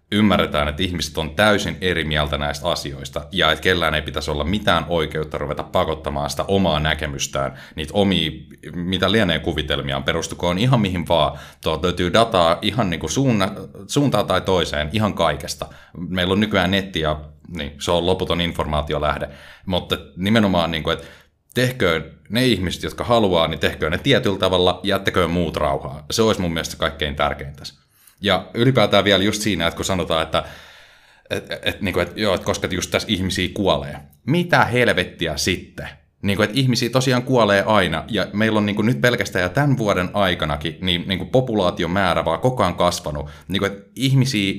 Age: 30-49